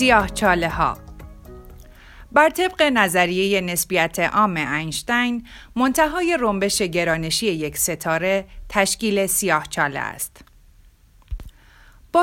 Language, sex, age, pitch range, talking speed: Persian, female, 40-59, 165-230 Hz, 85 wpm